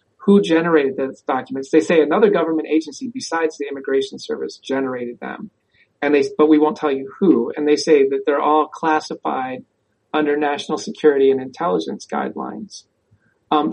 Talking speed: 160 wpm